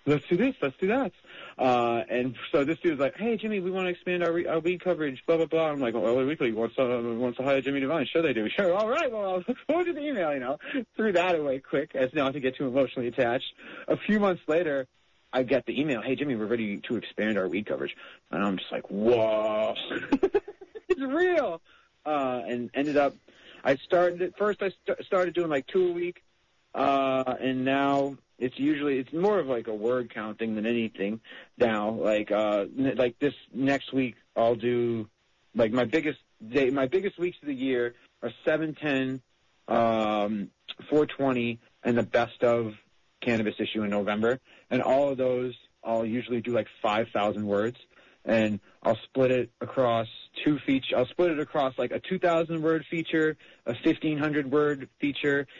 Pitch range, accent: 120-165 Hz, American